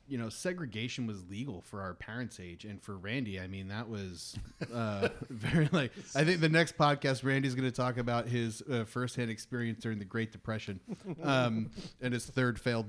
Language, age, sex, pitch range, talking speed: English, 30-49, male, 105-130 Hz, 195 wpm